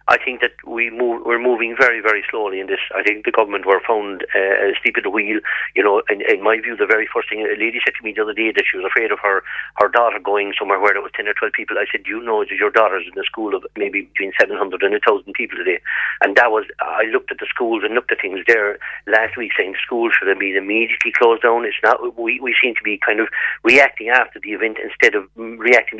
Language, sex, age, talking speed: English, male, 50-69, 270 wpm